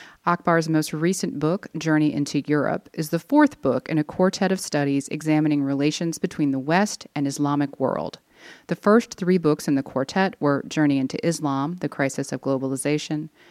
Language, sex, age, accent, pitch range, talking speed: English, female, 30-49, American, 145-175 Hz, 175 wpm